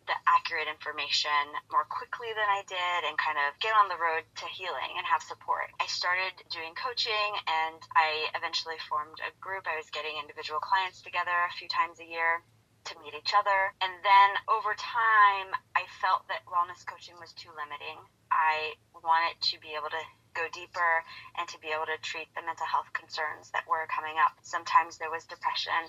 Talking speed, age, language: 190 wpm, 20-39, English